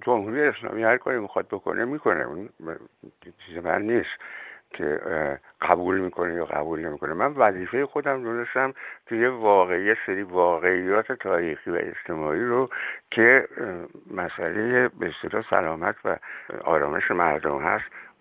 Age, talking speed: 60-79, 125 wpm